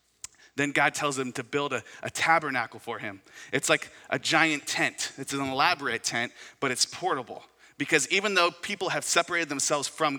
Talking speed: 185 wpm